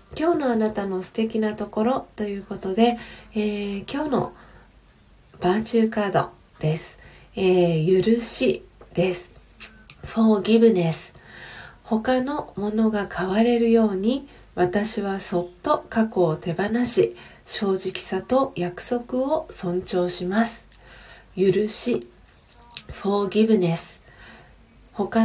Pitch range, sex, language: 185-235 Hz, female, Japanese